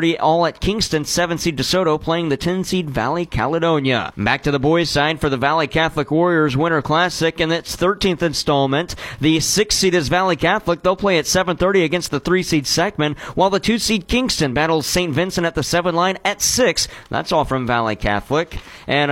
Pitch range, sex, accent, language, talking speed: 145-185 Hz, male, American, English, 180 wpm